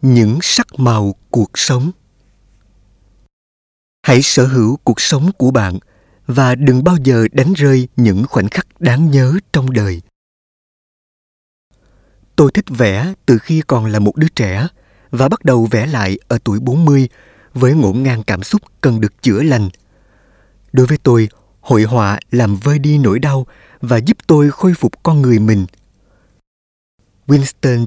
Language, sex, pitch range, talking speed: Vietnamese, male, 105-145 Hz, 155 wpm